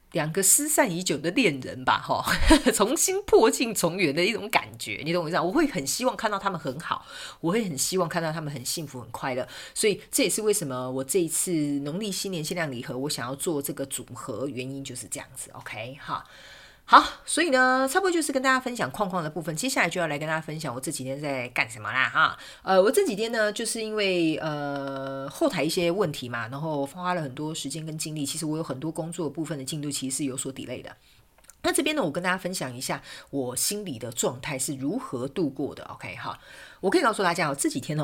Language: Chinese